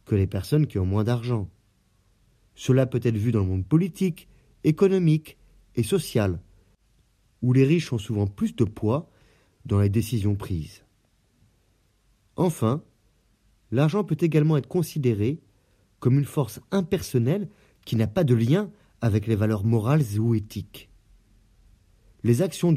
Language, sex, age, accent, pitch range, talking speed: French, male, 30-49, French, 105-145 Hz, 140 wpm